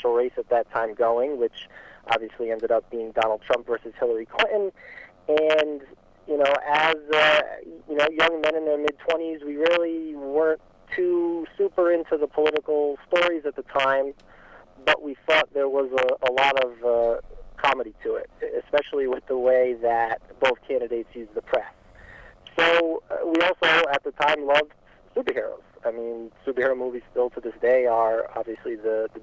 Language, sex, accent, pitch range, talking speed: English, male, American, 120-165 Hz, 170 wpm